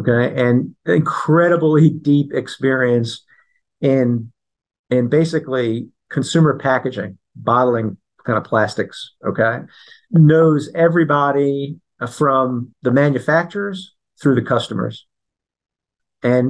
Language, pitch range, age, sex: English, 125-155 Hz, 50-69, male